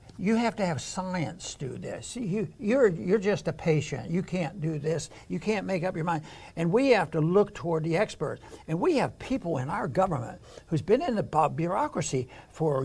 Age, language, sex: 60-79, English, male